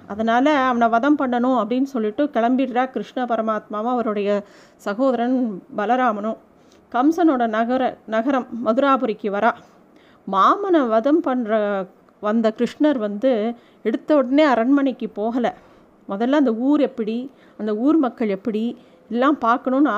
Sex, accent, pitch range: female, native, 230-285 Hz